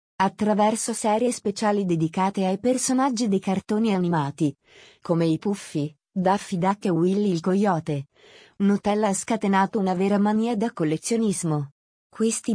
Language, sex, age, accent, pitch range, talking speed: Italian, female, 30-49, native, 175-210 Hz, 130 wpm